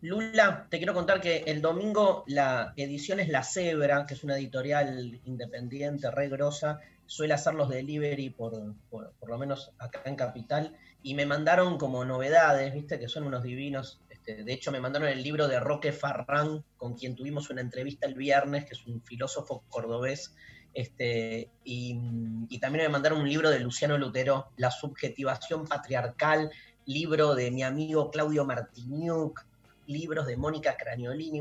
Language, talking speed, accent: Spanish, 165 wpm, Argentinian